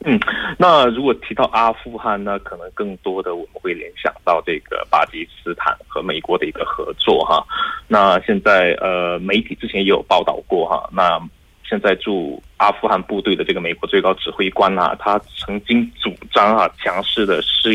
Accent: Chinese